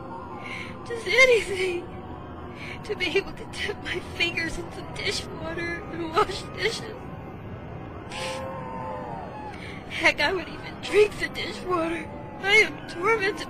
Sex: female